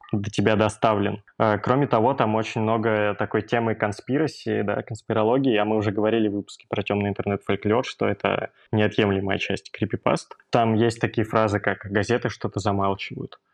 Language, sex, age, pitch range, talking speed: Russian, male, 20-39, 105-115 Hz, 155 wpm